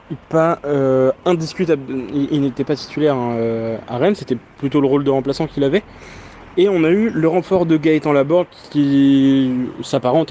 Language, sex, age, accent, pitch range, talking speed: French, male, 20-39, French, 135-160 Hz, 175 wpm